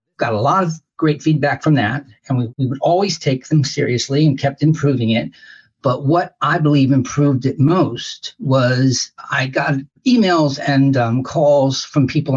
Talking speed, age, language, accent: 175 wpm, 50-69, English, American